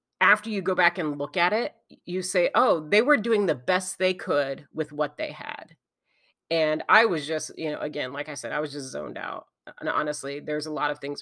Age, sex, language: 30-49, female, English